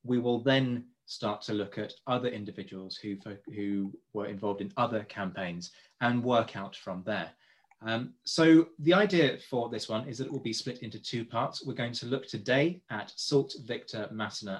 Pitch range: 105-135 Hz